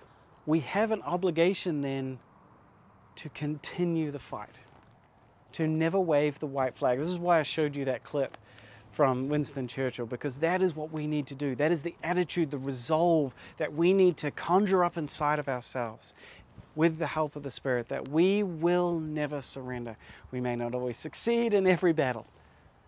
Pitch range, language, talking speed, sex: 130-170 Hz, English, 180 wpm, male